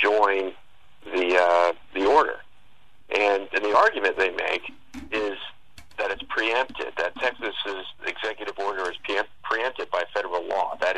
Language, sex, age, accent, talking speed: English, male, 50-69, American, 135 wpm